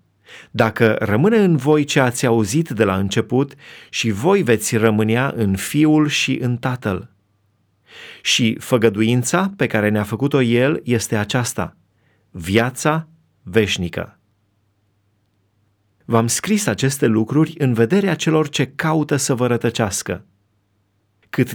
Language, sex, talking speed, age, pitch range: Romanian, male, 125 wpm, 30-49, 110-150 Hz